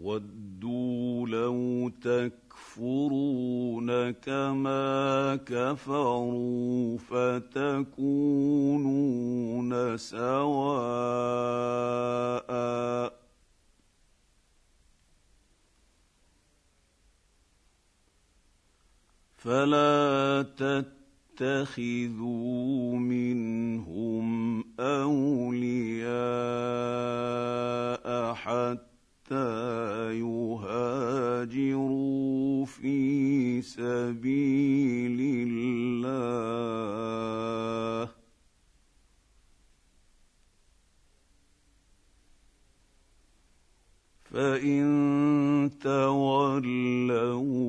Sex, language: male, English